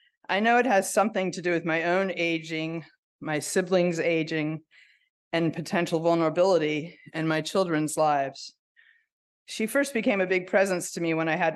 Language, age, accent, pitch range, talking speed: English, 20-39, American, 160-195 Hz, 165 wpm